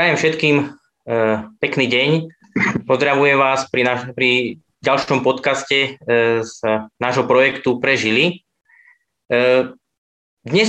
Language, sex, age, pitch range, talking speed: Slovak, male, 20-39, 120-145 Hz, 90 wpm